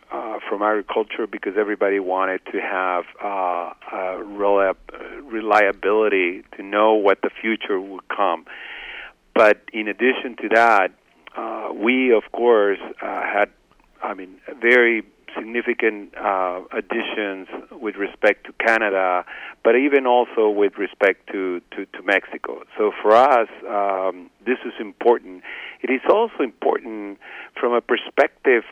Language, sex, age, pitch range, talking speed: English, male, 50-69, 95-125 Hz, 130 wpm